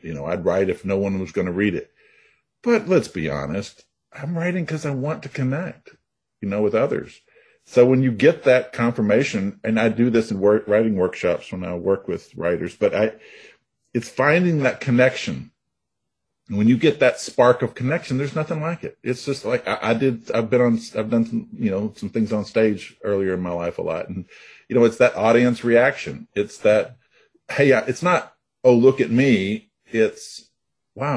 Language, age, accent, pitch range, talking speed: English, 50-69, American, 100-135 Hz, 200 wpm